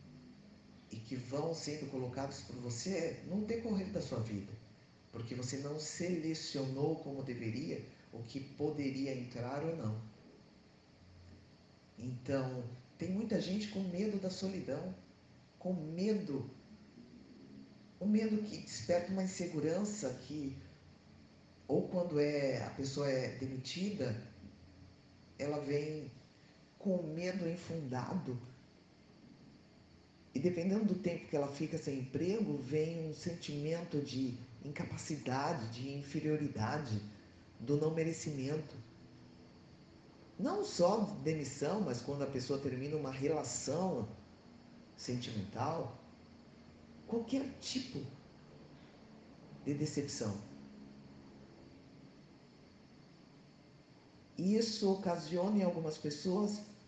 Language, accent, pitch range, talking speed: Portuguese, Brazilian, 125-175 Hz, 95 wpm